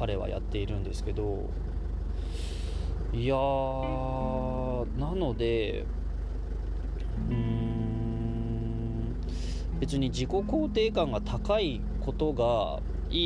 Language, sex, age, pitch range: Japanese, male, 20-39, 80-130 Hz